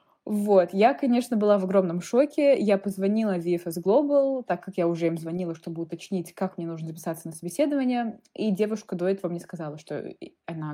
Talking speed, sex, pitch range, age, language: 190 wpm, female, 175-240 Hz, 20-39, Russian